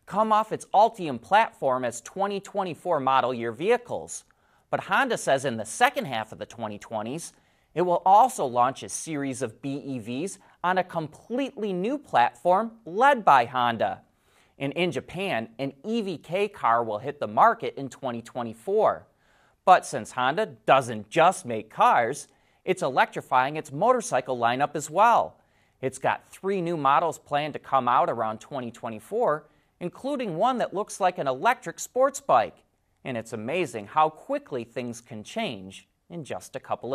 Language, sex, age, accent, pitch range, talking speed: English, male, 30-49, American, 130-205 Hz, 155 wpm